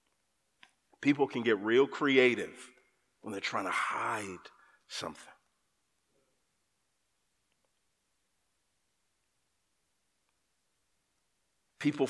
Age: 50-69